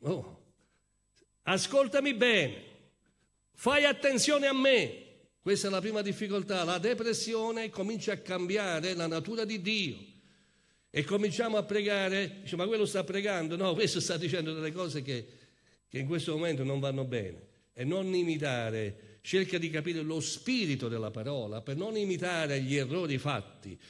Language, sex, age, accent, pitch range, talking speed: Italian, male, 50-69, native, 140-210 Hz, 150 wpm